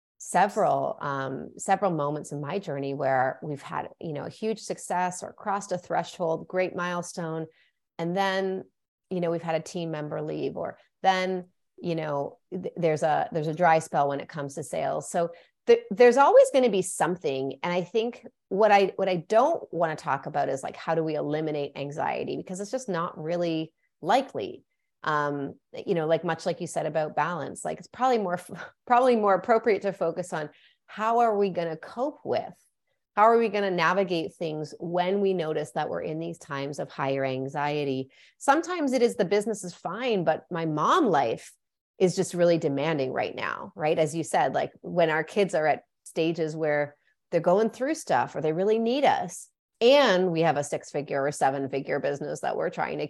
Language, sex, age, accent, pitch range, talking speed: English, female, 30-49, American, 150-200 Hz, 200 wpm